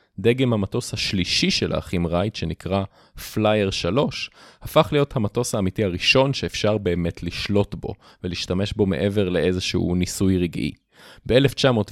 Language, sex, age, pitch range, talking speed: Hebrew, male, 30-49, 90-115 Hz, 125 wpm